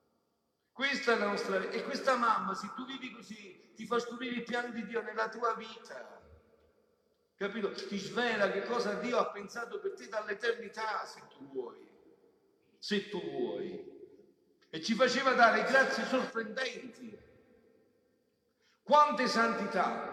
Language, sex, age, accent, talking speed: Italian, male, 50-69, native, 140 wpm